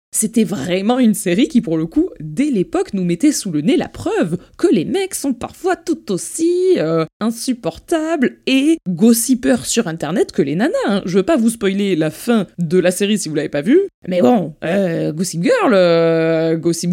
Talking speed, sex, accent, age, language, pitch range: 200 wpm, female, French, 20-39, French, 170-235 Hz